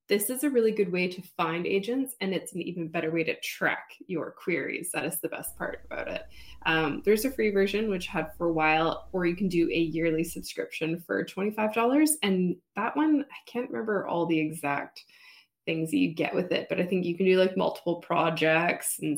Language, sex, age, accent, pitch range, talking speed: English, female, 20-39, American, 165-205 Hz, 220 wpm